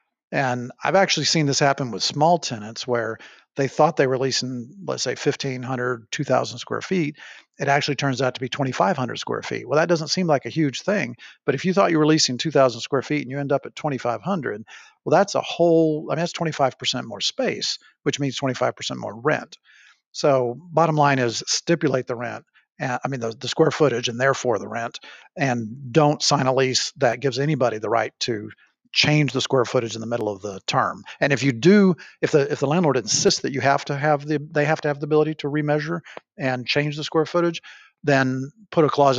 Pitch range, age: 125-150 Hz, 50-69